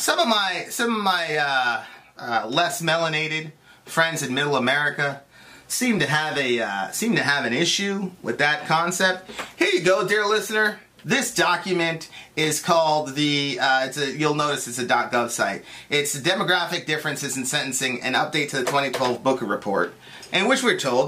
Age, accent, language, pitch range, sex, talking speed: 30-49, American, English, 145-210 Hz, male, 180 wpm